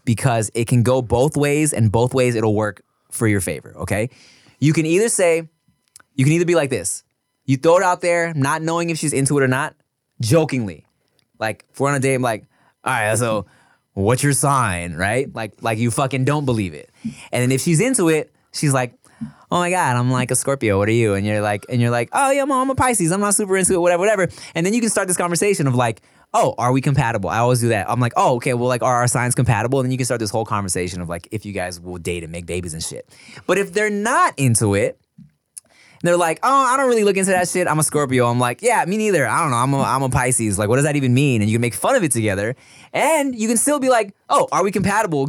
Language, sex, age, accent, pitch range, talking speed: English, male, 20-39, American, 115-165 Hz, 265 wpm